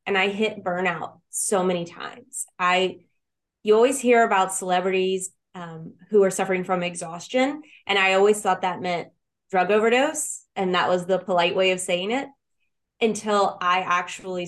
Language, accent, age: English, American, 20-39